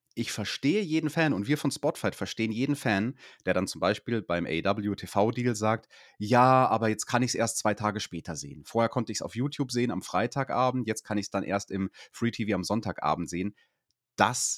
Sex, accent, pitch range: male, German, 100-125 Hz